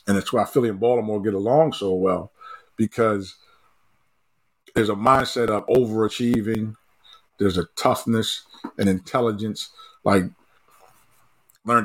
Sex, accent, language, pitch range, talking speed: male, American, English, 105-125 Hz, 115 wpm